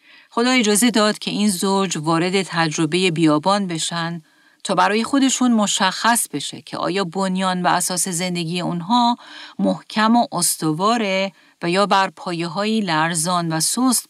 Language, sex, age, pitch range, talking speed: Persian, female, 40-59, 175-225 Hz, 135 wpm